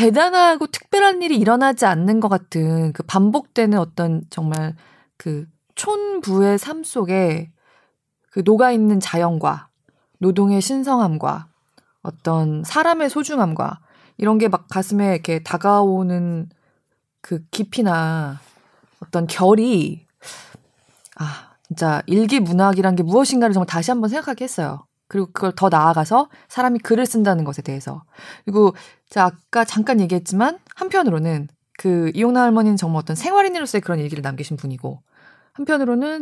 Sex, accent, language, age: female, native, Korean, 20-39